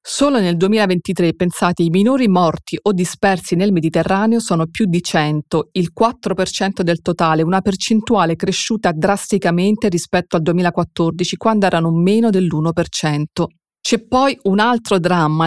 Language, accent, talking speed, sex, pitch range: Italian, native, 135 wpm, female, 170-210 Hz